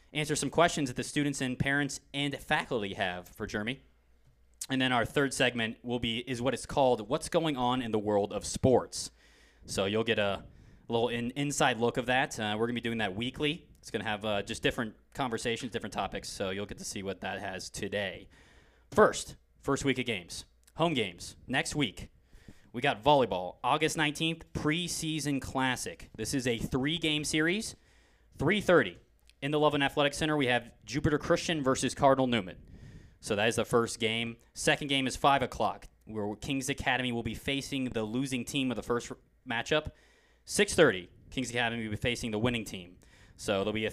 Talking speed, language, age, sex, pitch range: 195 wpm, English, 20-39, male, 110-140 Hz